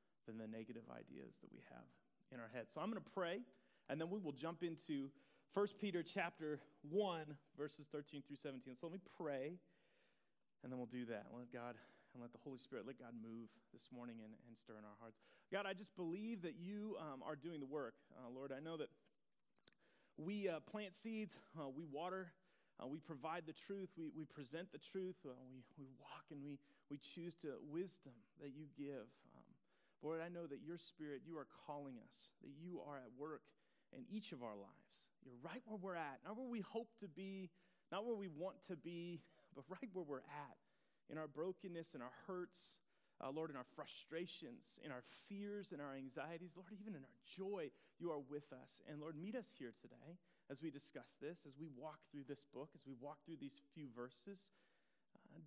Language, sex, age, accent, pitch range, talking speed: English, male, 30-49, American, 140-185 Hz, 210 wpm